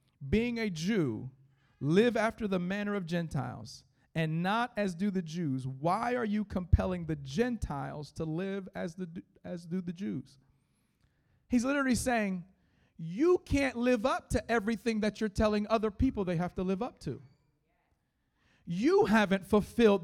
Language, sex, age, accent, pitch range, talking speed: English, male, 40-59, American, 175-245 Hz, 155 wpm